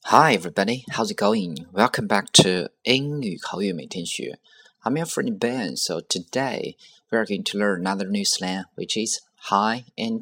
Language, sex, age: Chinese, male, 30-49